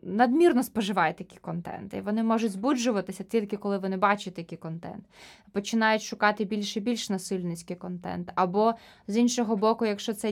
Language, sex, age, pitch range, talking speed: Ukrainian, female, 20-39, 200-250 Hz, 155 wpm